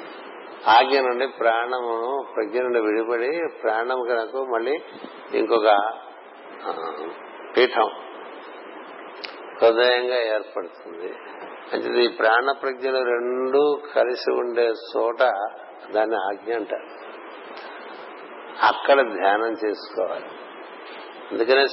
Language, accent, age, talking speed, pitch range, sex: Telugu, native, 60-79, 75 wpm, 110-135 Hz, male